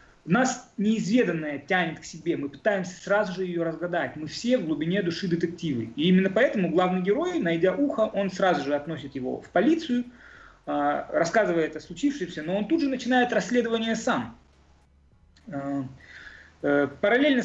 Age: 30-49